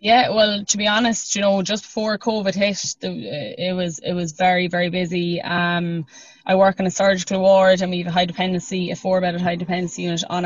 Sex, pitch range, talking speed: female, 175-190 Hz, 210 wpm